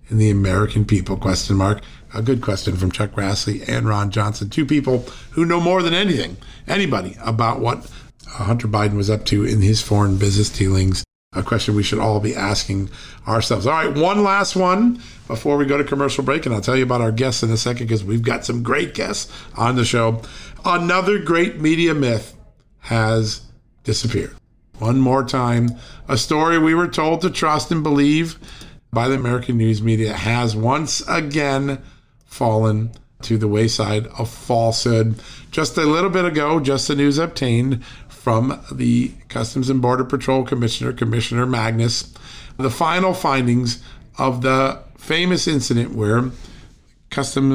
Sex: male